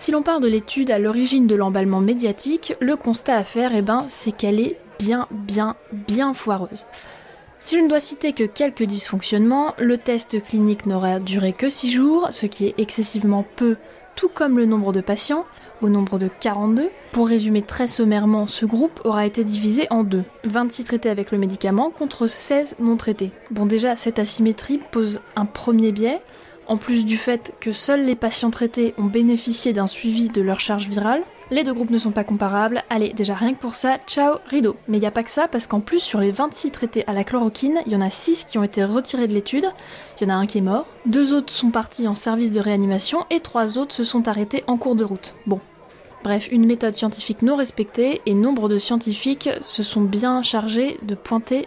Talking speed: 215 wpm